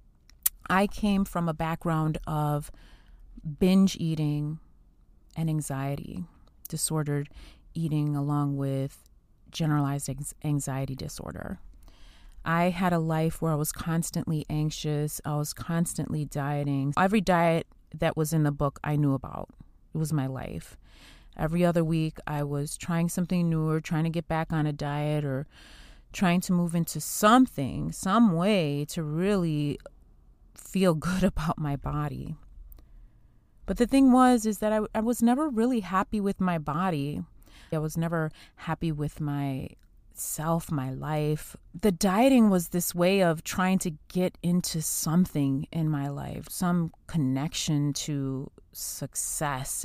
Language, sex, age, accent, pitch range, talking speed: English, female, 30-49, American, 145-175 Hz, 140 wpm